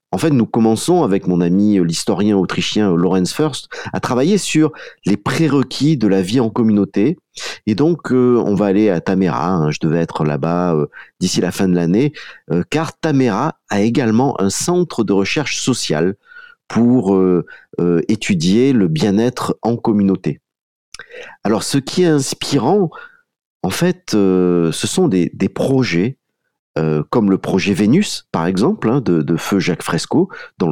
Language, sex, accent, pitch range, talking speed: French, male, French, 90-130 Hz, 165 wpm